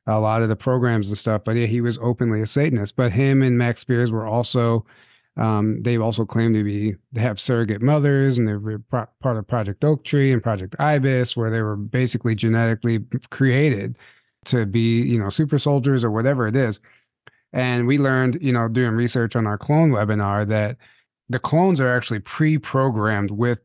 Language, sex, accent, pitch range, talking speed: English, male, American, 115-135 Hz, 195 wpm